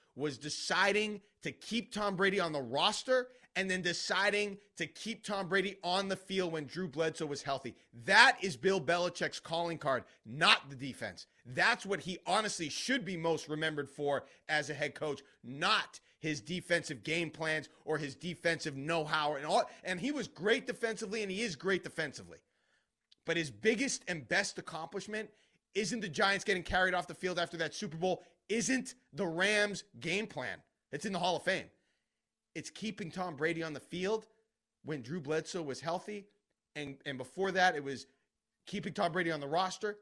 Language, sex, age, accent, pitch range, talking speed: English, male, 30-49, American, 150-195 Hz, 180 wpm